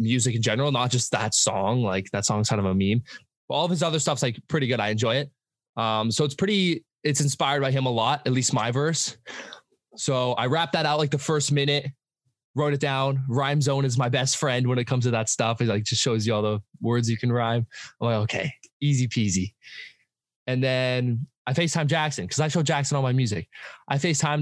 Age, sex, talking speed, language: 20-39, male, 230 wpm, English